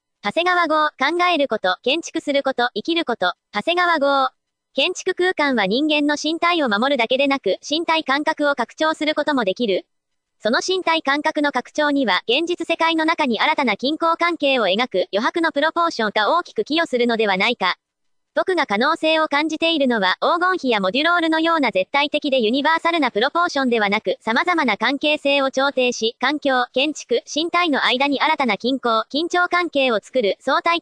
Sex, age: male, 40-59